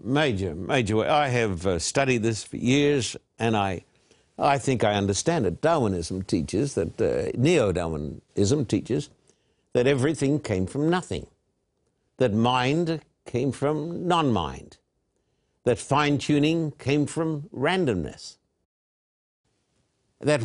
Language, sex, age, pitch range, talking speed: English, male, 60-79, 110-160 Hz, 115 wpm